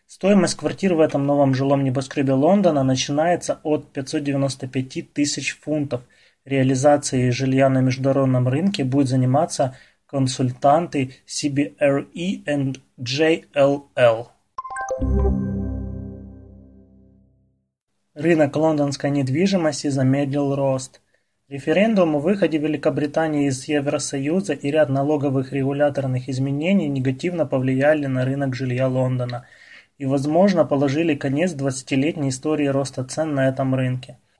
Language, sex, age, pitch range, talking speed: Russian, male, 20-39, 135-150 Hz, 100 wpm